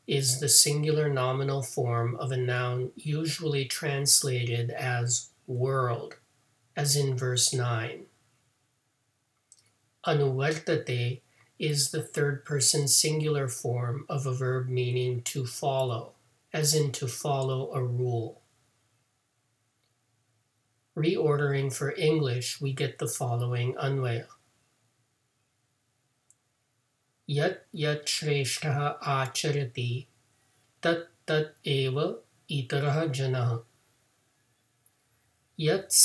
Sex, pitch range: male, 120-145 Hz